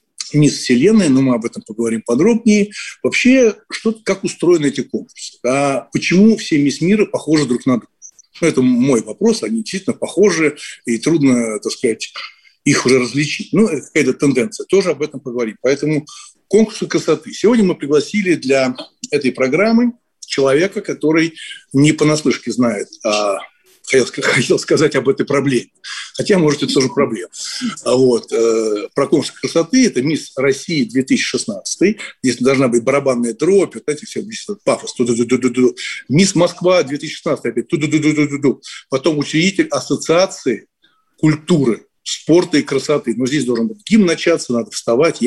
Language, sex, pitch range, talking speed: Russian, male, 130-200 Hz, 140 wpm